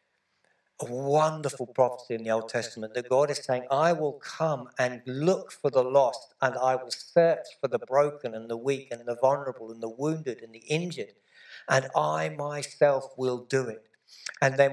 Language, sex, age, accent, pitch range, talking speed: English, male, 60-79, British, 125-150 Hz, 190 wpm